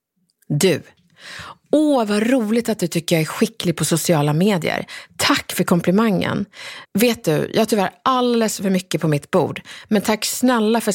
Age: 30-49